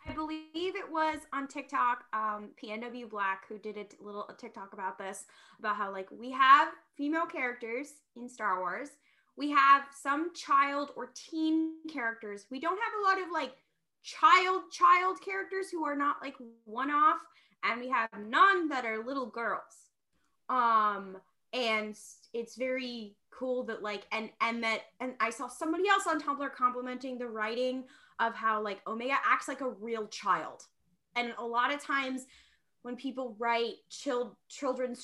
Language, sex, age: English, female, 20-39